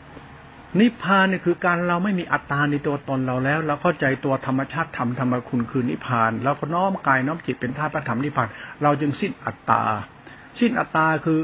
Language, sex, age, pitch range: Thai, male, 60-79, 130-160 Hz